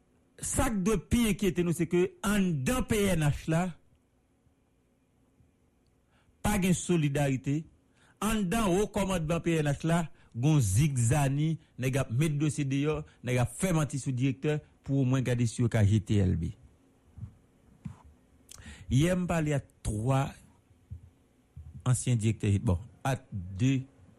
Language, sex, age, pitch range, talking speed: English, male, 60-79, 110-165 Hz, 105 wpm